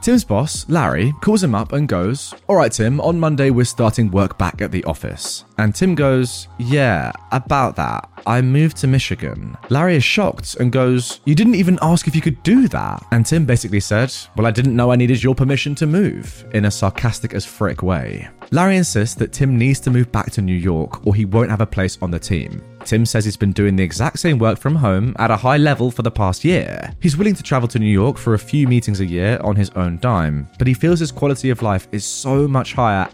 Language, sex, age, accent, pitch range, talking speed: English, male, 20-39, British, 105-140 Hz, 235 wpm